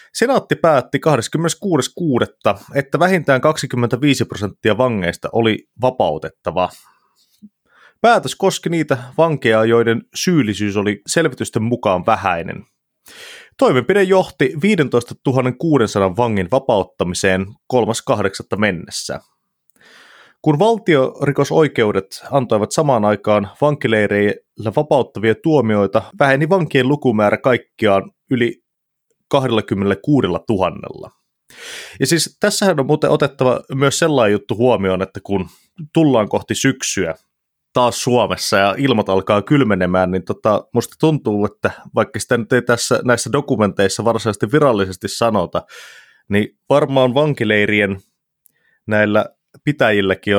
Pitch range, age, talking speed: 105-145 Hz, 30-49, 100 wpm